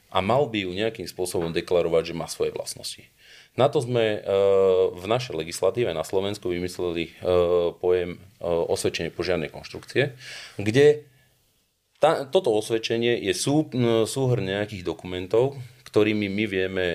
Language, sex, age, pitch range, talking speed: Slovak, male, 30-49, 95-125 Hz, 120 wpm